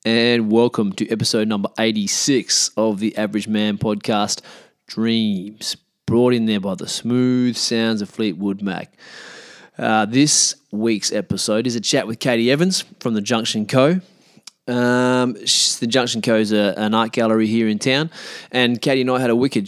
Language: English